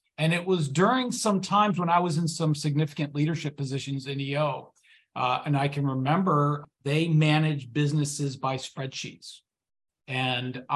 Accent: American